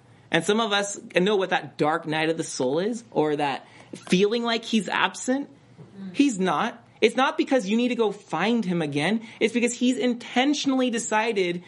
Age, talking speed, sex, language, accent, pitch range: 30-49, 185 wpm, male, English, American, 150-210 Hz